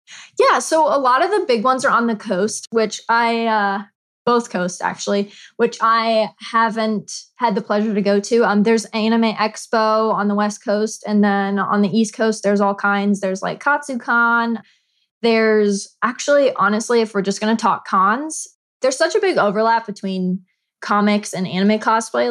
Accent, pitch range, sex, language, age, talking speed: American, 195-240 Hz, female, English, 20-39, 185 wpm